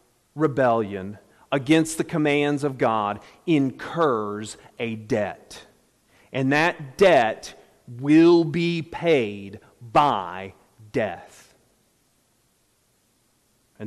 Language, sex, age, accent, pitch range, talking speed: English, male, 40-59, American, 115-160 Hz, 80 wpm